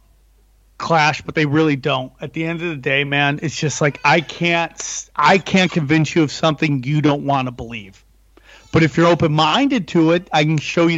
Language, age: English, 40-59